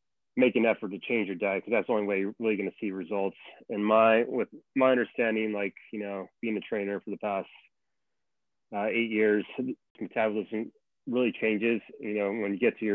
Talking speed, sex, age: 210 wpm, male, 30-49